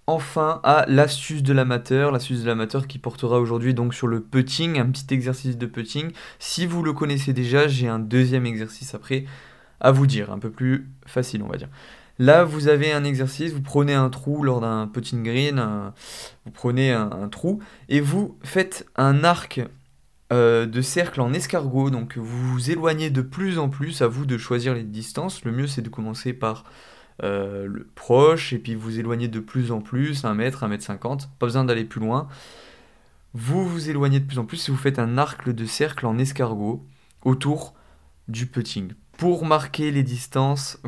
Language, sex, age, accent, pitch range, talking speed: French, male, 20-39, French, 115-140 Hz, 190 wpm